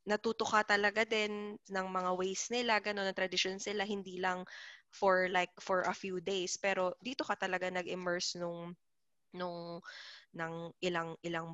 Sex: female